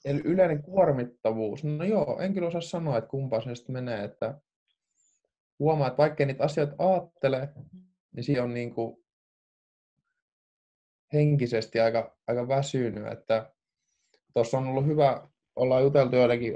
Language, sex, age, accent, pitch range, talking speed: Finnish, male, 20-39, native, 115-145 Hz, 130 wpm